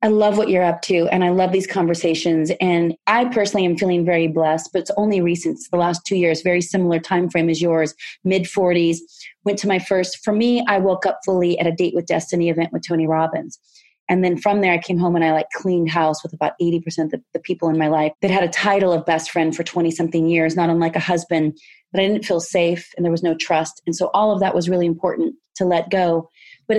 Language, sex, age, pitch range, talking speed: English, female, 30-49, 170-200 Hz, 245 wpm